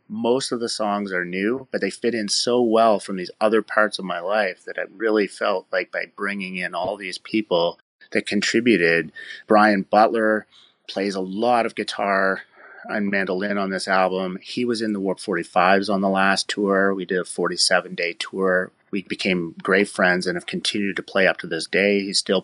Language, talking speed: English, 200 wpm